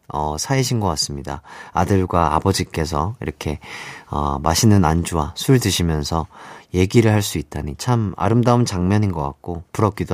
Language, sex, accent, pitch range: Korean, male, native, 90-155 Hz